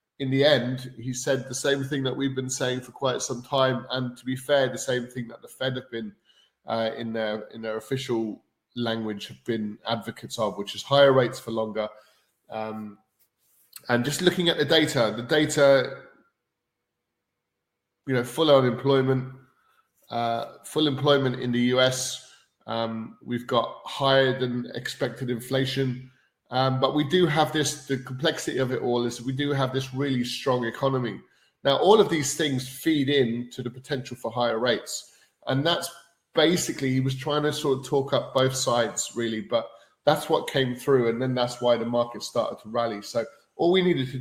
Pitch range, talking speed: 120-135 Hz, 185 wpm